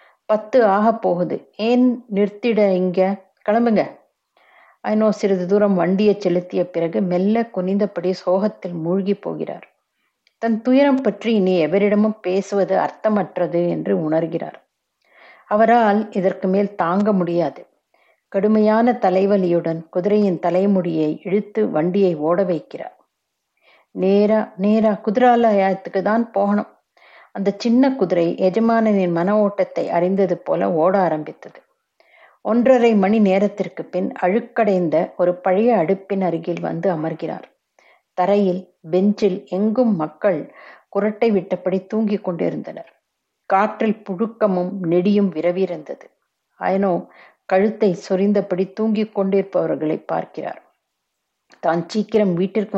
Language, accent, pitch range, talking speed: Tamil, native, 180-215 Hz, 95 wpm